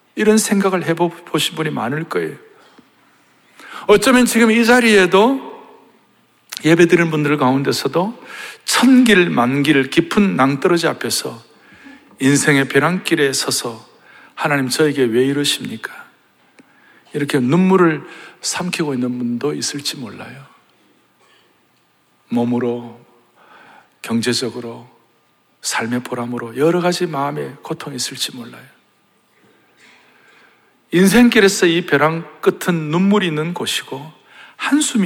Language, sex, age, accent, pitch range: Korean, male, 60-79, native, 135-195 Hz